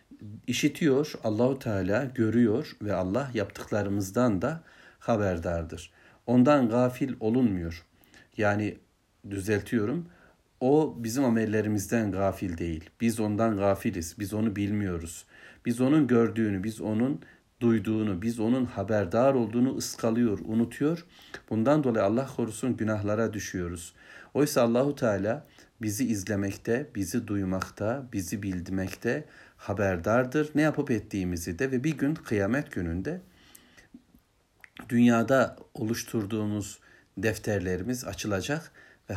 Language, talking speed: Turkish, 105 wpm